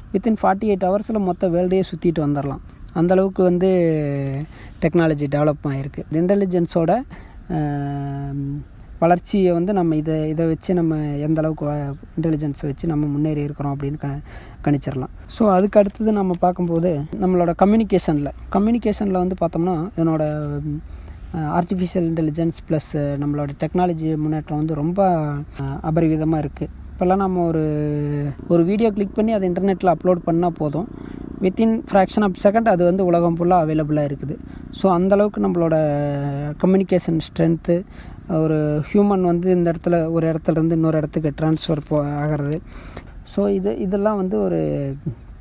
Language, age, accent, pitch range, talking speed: Tamil, 20-39, native, 150-185 Hz, 125 wpm